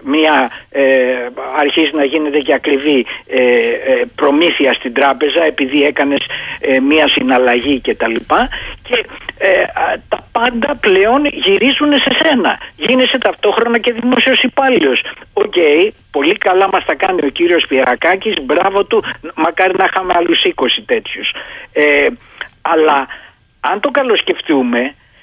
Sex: male